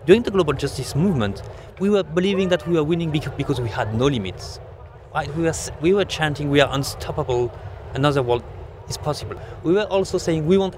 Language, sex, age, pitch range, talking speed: English, male, 30-49, 115-170 Hz, 190 wpm